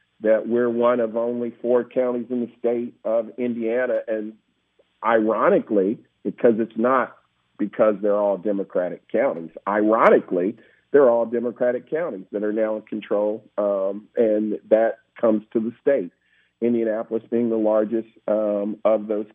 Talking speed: 145 wpm